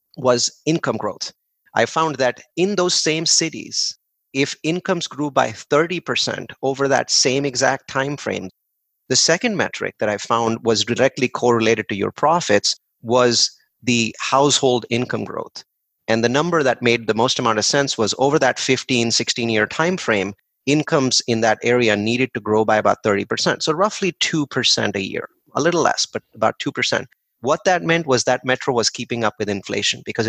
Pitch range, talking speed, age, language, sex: 115-140 Hz, 170 wpm, 30-49, English, male